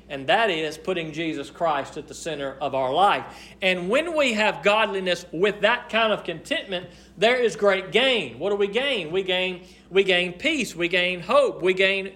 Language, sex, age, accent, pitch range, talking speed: English, male, 40-59, American, 170-220 Hz, 195 wpm